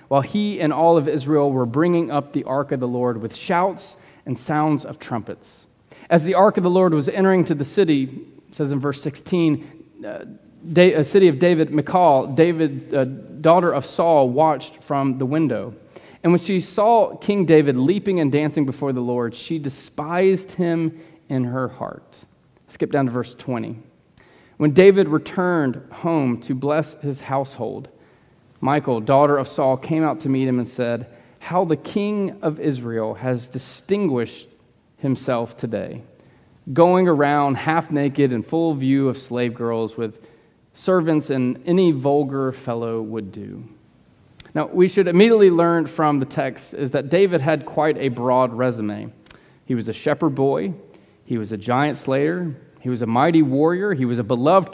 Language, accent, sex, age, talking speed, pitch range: English, American, male, 30-49, 170 wpm, 130-170 Hz